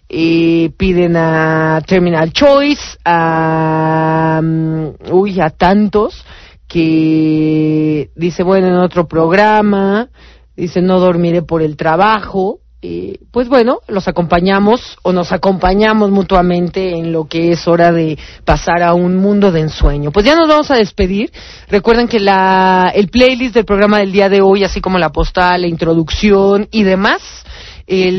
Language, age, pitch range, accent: English, 40-59, 170-210 Hz, Mexican